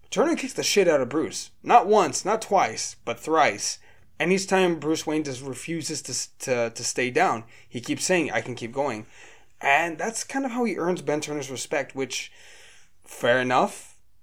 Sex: male